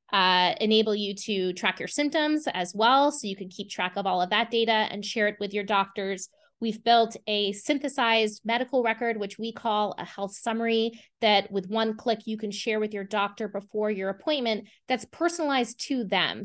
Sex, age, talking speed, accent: female, 20-39, 195 wpm, American